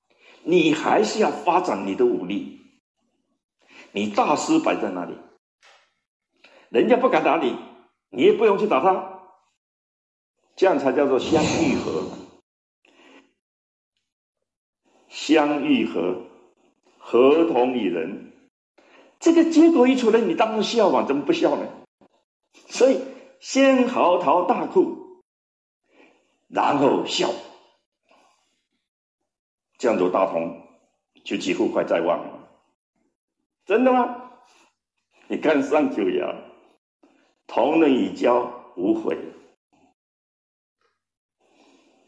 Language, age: Chinese, 50-69